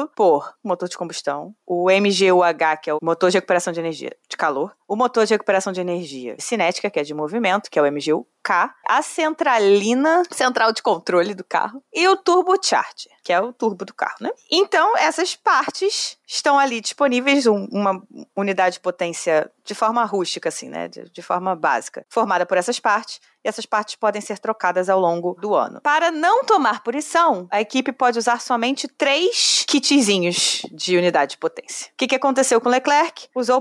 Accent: Brazilian